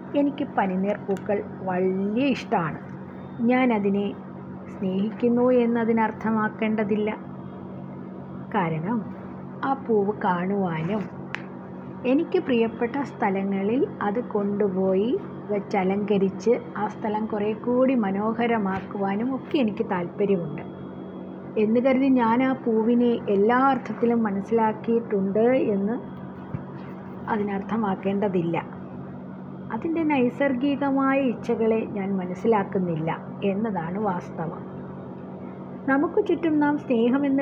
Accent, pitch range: native, 190-240 Hz